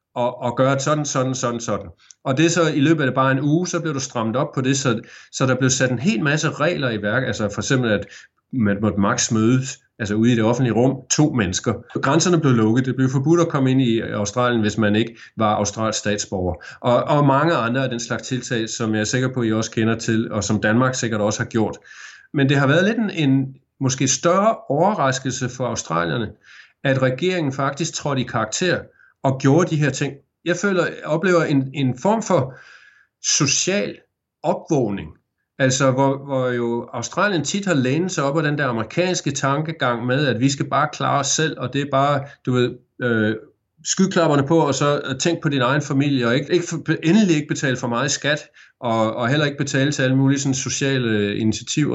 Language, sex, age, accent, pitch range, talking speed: Danish, male, 30-49, native, 120-150 Hz, 210 wpm